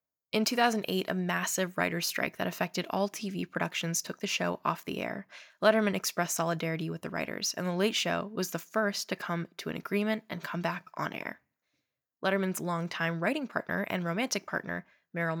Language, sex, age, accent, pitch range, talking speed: English, female, 10-29, American, 170-210 Hz, 185 wpm